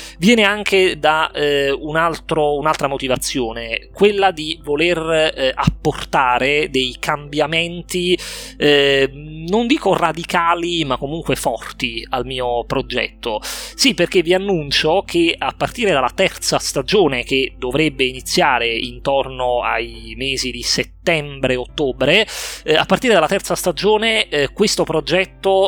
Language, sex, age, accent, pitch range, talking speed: Italian, male, 30-49, native, 130-165 Hz, 120 wpm